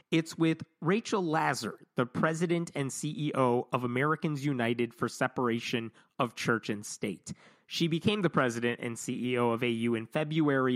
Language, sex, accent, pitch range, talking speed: English, male, American, 120-155 Hz, 150 wpm